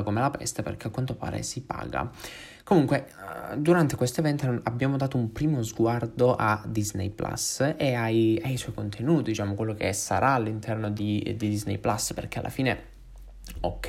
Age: 20-39